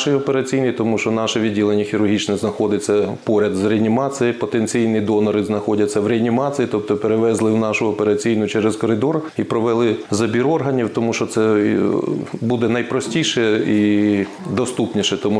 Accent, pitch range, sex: native, 105-120 Hz, male